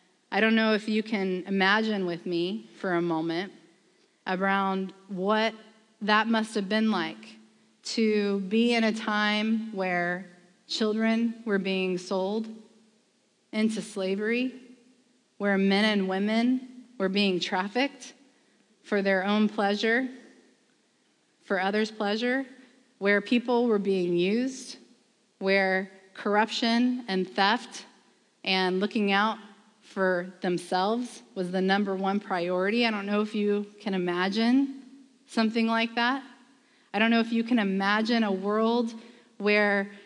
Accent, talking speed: American, 125 wpm